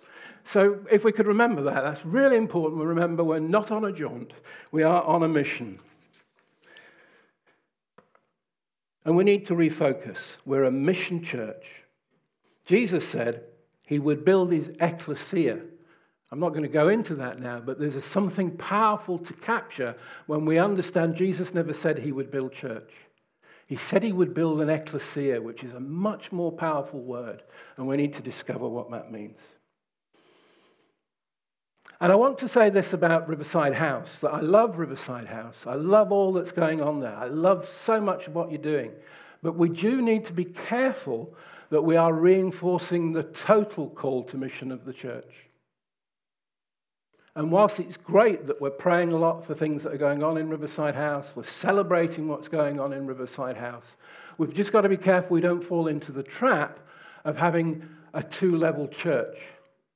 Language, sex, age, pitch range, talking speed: English, male, 50-69, 145-185 Hz, 175 wpm